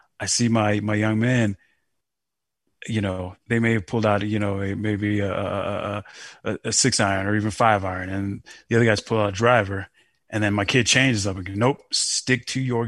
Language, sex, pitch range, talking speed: English, male, 105-135 Hz, 220 wpm